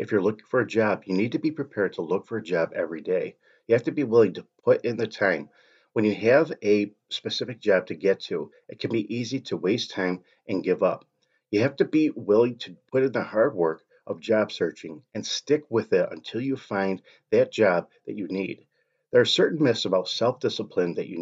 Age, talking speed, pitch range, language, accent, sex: 40-59, 230 wpm, 105-150 Hz, English, American, male